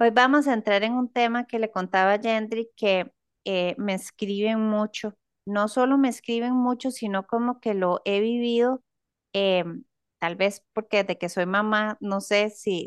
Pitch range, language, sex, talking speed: 185-230 Hz, Spanish, female, 175 wpm